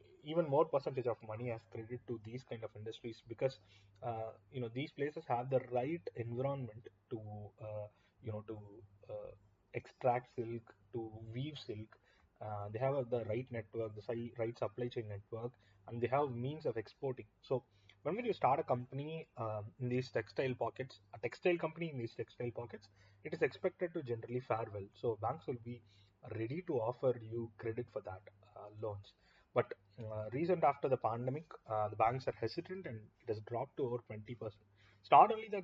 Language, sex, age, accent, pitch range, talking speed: English, male, 30-49, Indian, 105-130 Hz, 190 wpm